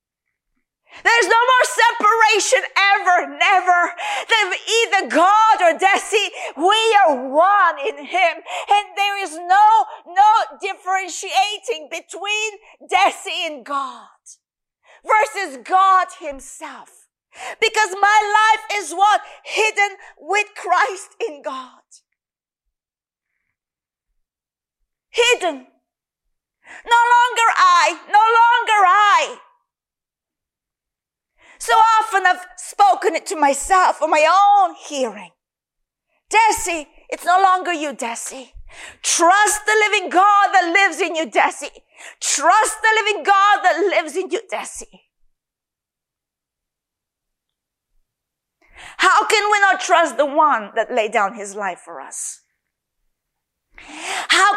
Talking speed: 105 wpm